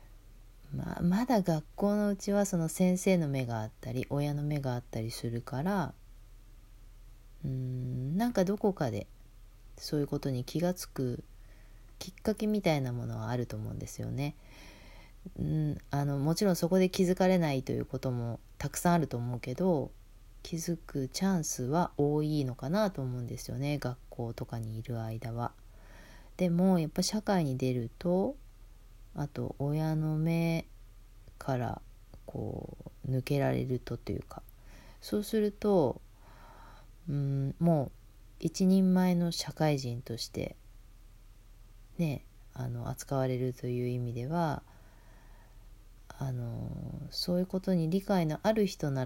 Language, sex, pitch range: Japanese, female, 110-160 Hz